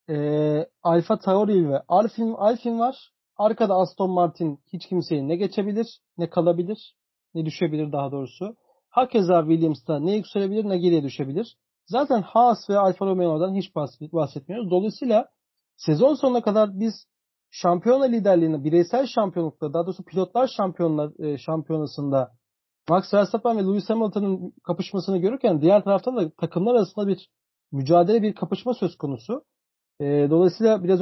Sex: male